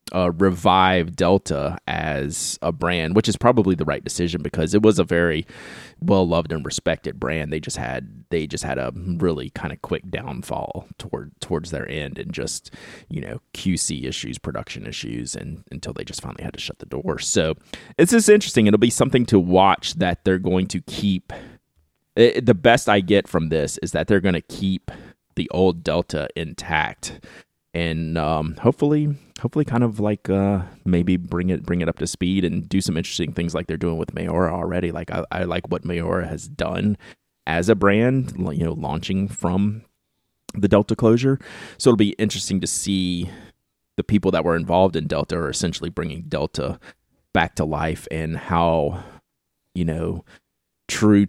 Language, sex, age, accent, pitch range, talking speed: English, male, 30-49, American, 80-100 Hz, 185 wpm